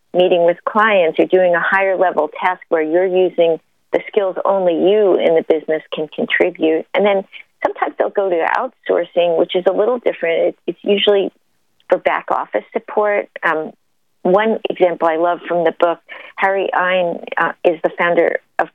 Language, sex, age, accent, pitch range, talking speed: English, female, 50-69, American, 170-200 Hz, 165 wpm